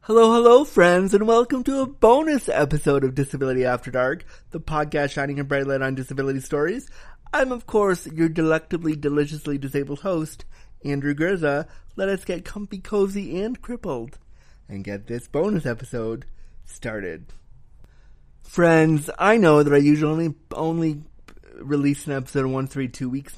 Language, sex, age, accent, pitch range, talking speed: English, male, 30-49, American, 125-165 Hz, 150 wpm